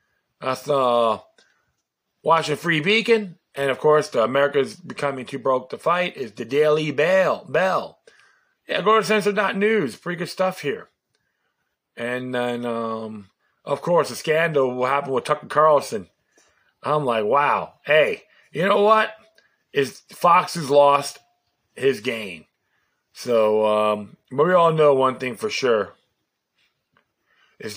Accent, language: American, English